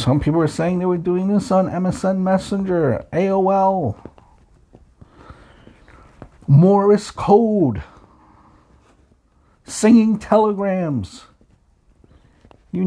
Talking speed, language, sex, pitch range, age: 80 wpm, English, male, 100-160 Hz, 50-69